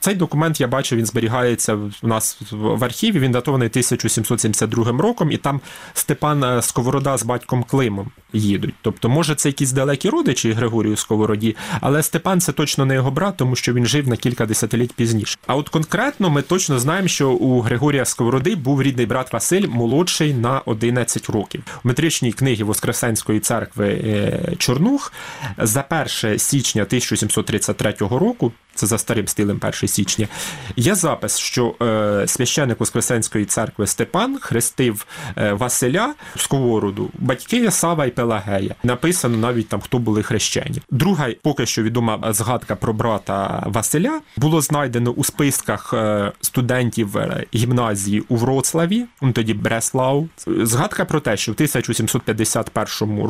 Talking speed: 140 wpm